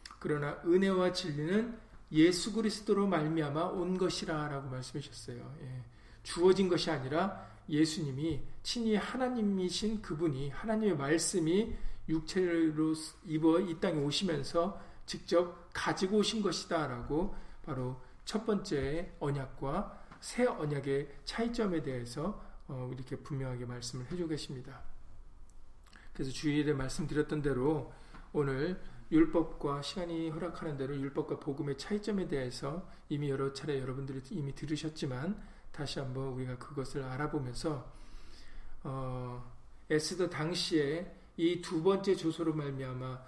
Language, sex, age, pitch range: Korean, male, 40-59, 135-170 Hz